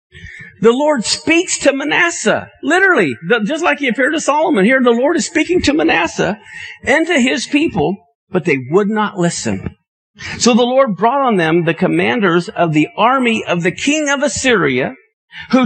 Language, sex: English, male